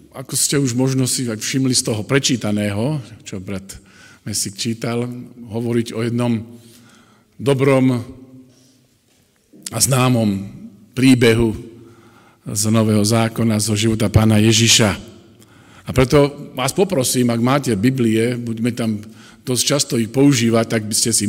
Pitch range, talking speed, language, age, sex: 110-130 Hz, 125 wpm, Slovak, 50-69, male